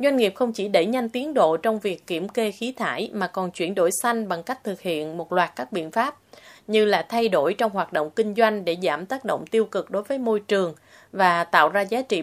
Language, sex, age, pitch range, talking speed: Vietnamese, female, 20-39, 180-235 Hz, 255 wpm